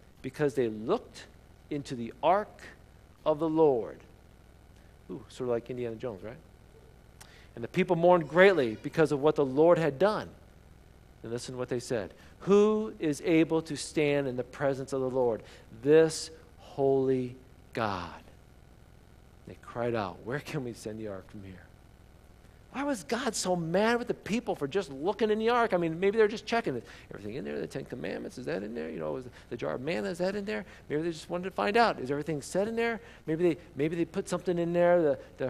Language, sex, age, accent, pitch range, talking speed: English, male, 50-69, American, 120-175 Hz, 205 wpm